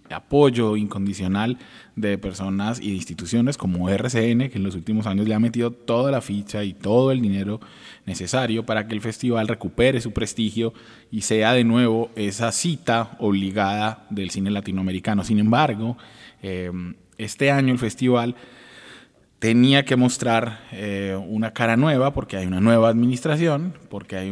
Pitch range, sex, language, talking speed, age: 100-125 Hz, male, Spanish, 155 wpm, 20-39